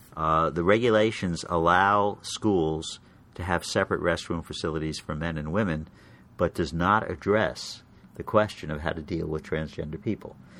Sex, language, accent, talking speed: male, English, American, 155 wpm